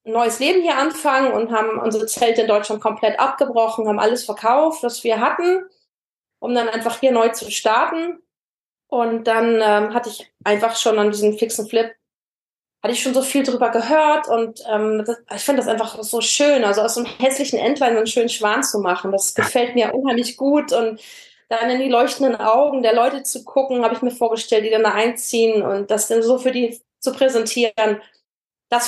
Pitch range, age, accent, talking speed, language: 220-260 Hz, 20-39, German, 200 wpm, German